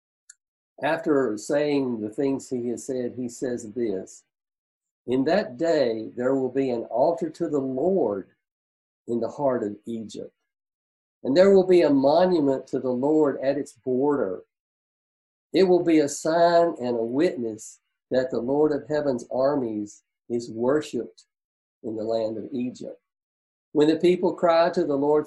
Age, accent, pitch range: 50-69, American, 115-155 Hz